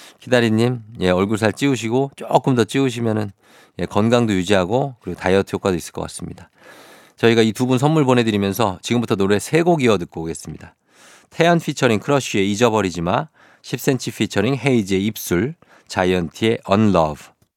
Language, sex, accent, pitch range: Korean, male, native, 95-130 Hz